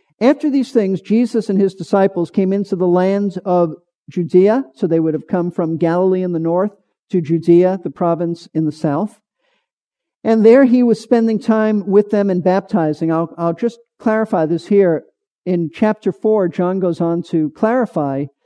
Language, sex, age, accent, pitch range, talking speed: English, male, 50-69, American, 175-220 Hz, 175 wpm